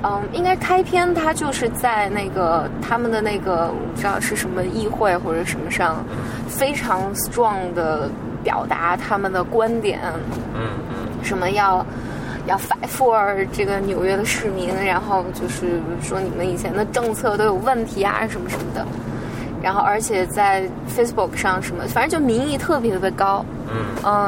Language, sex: Chinese, female